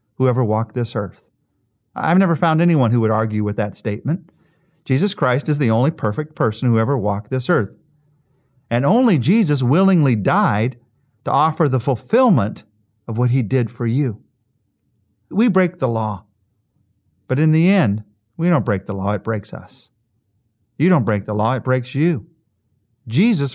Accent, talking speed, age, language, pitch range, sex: American, 170 wpm, 40-59, English, 110-140 Hz, male